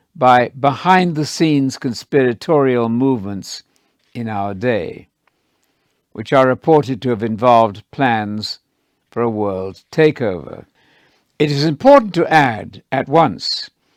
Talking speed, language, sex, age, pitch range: 115 wpm, English, male, 60-79, 115-160 Hz